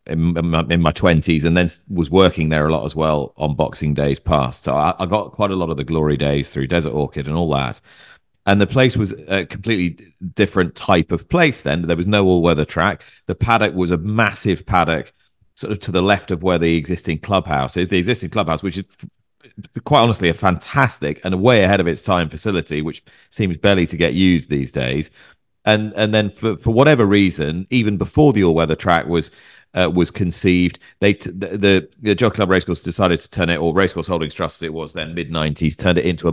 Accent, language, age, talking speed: British, English, 30-49, 220 wpm